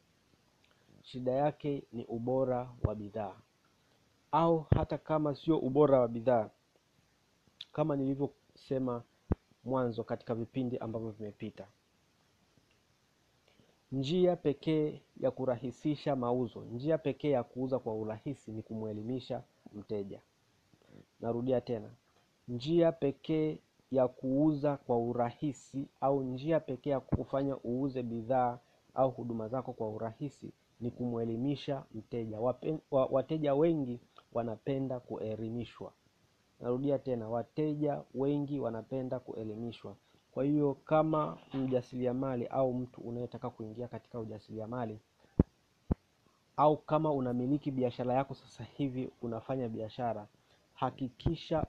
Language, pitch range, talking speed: Swahili, 115-140 Hz, 105 wpm